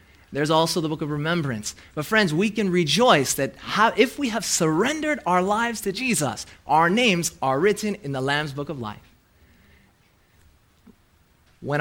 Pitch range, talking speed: 120-175 Hz, 165 wpm